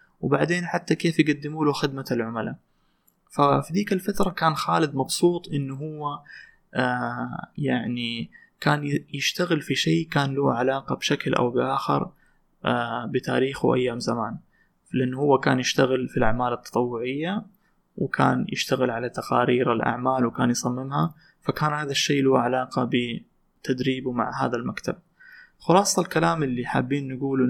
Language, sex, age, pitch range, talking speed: Arabic, male, 20-39, 125-155 Hz, 120 wpm